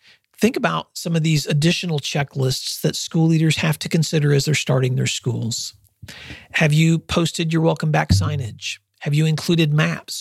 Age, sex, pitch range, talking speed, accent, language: 40-59, male, 145-165 Hz, 170 wpm, American, English